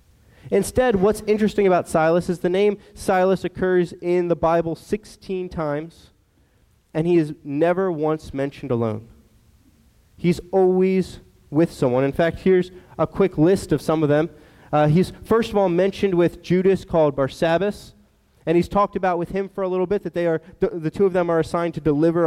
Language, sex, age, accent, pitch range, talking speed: English, male, 20-39, American, 155-190 Hz, 185 wpm